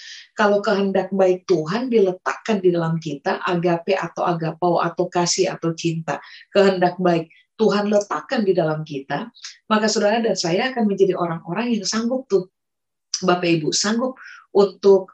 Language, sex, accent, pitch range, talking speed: Indonesian, female, native, 175-215 Hz, 145 wpm